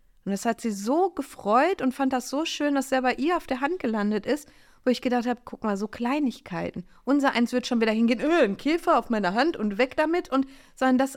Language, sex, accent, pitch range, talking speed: German, female, German, 240-285 Hz, 240 wpm